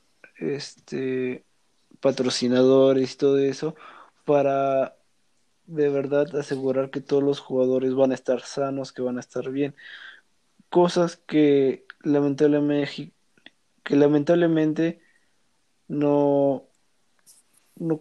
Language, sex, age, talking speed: Spanish, male, 20-39, 95 wpm